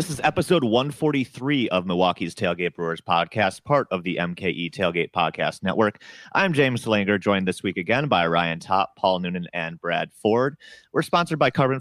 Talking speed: 180 wpm